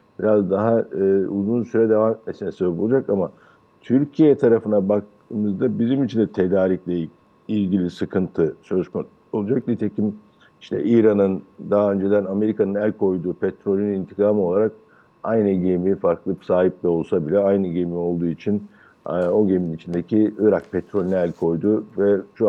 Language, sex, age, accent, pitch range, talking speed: Turkish, male, 60-79, native, 95-115 Hz, 145 wpm